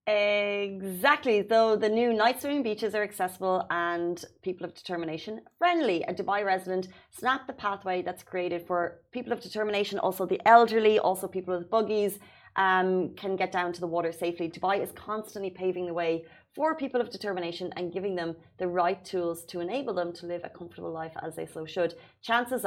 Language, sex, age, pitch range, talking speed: Arabic, female, 30-49, 175-210 Hz, 185 wpm